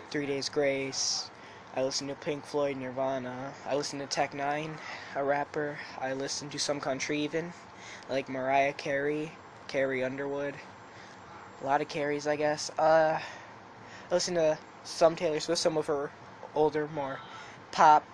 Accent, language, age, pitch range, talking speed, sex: American, English, 10-29, 140-175 Hz, 150 wpm, male